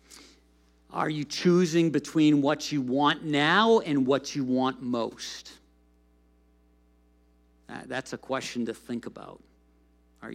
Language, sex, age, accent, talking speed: English, male, 50-69, American, 120 wpm